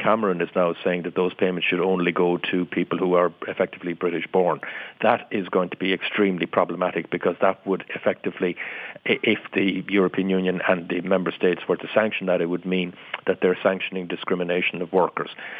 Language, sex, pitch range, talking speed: English, male, 90-95 Hz, 185 wpm